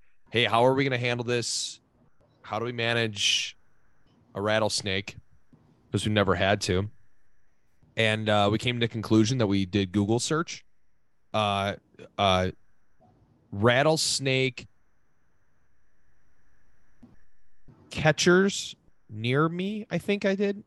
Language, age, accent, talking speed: English, 30-49, American, 115 wpm